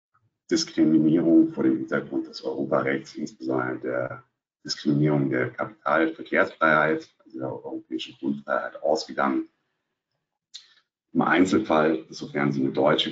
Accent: German